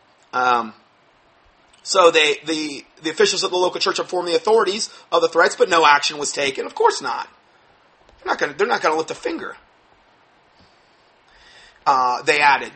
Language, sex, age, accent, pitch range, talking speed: English, male, 30-49, American, 135-185 Hz, 160 wpm